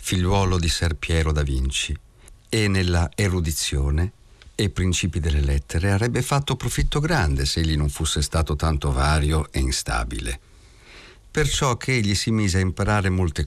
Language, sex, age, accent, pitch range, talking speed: Italian, male, 50-69, native, 75-115 Hz, 150 wpm